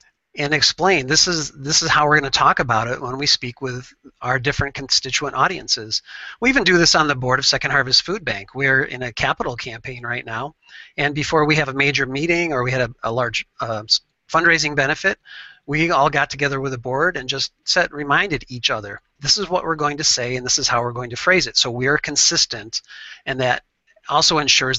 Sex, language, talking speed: male, English, 225 wpm